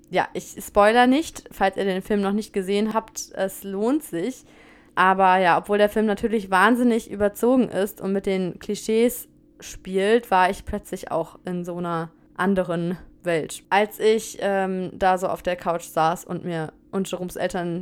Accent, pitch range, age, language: German, 175-205 Hz, 20-39, German